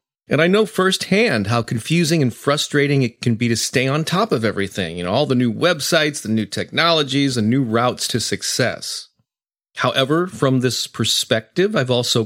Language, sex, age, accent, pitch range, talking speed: English, male, 40-59, American, 115-150 Hz, 180 wpm